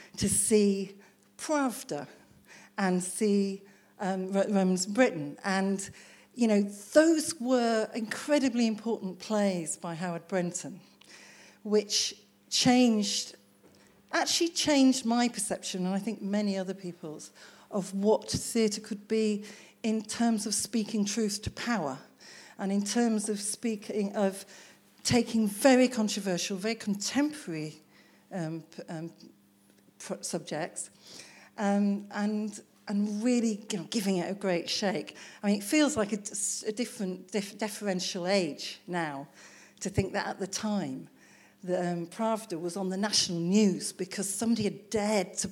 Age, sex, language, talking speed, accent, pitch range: 50-69, female, English, 130 wpm, British, 190-225 Hz